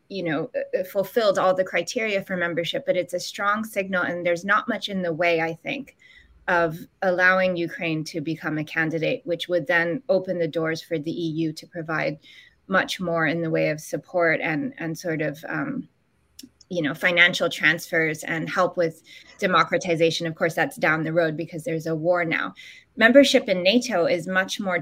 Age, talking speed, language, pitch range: 20-39, 185 wpm, English, 165-190 Hz